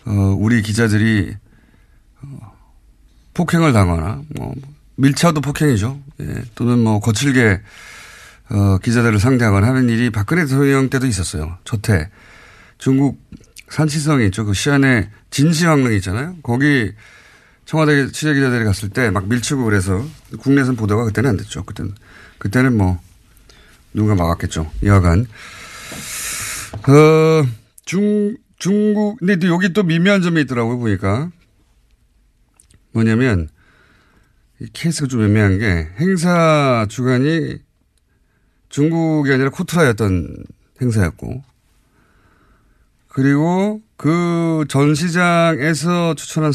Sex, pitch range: male, 105-150 Hz